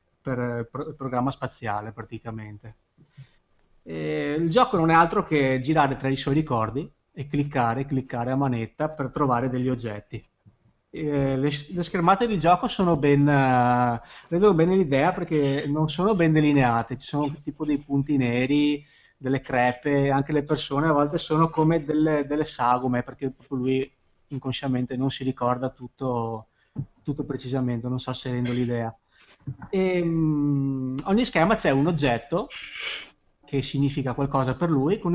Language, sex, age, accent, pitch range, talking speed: Italian, male, 30-49, native, 130-155 Hz, 150 wpm